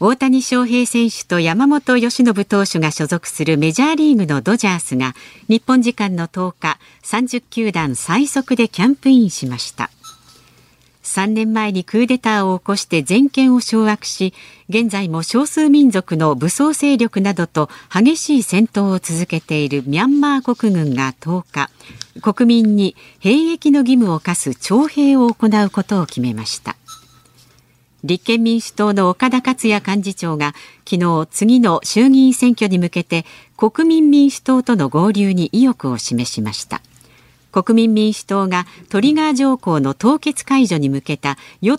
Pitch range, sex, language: 165-245 Hz, female, Japanese